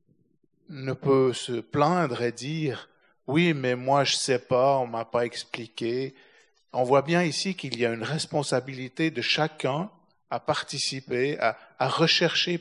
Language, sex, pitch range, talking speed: French, male, 115-150 Hz, 150 wpm